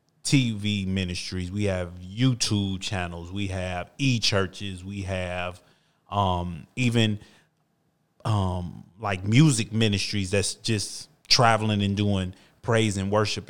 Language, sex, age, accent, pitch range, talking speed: English, male, 30-49, American, 95-115 Hz, 110 wpm